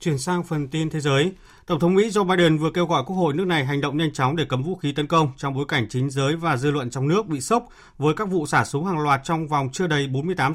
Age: 30-49